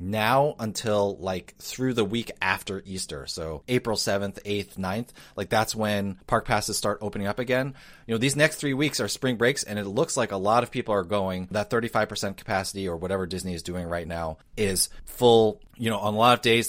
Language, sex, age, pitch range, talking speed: English, male, 30-49, 95-115 Hz, 215 wpm